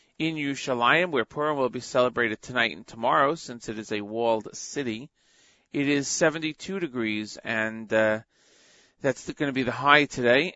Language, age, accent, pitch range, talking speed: English, 40-59, American, 115-150 Hz, 165 wpm